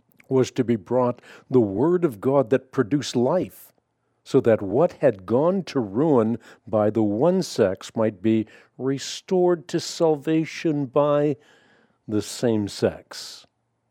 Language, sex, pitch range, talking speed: English, male, 115-140 Hz, 135 wpm